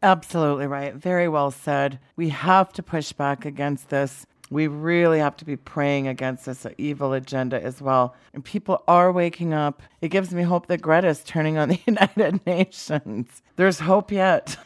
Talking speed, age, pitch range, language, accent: 175 wpm, 40-59, 135-160 Hz, English, American